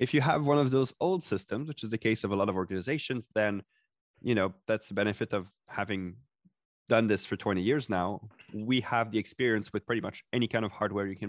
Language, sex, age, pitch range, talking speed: English, male, 20-39, 100-115 Hz, 235 wpm